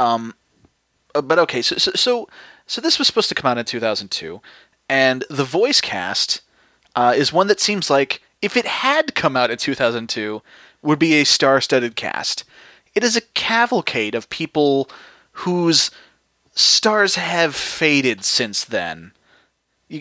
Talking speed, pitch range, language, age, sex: 150 wpm, 115-150 Hz, English, 30-49, male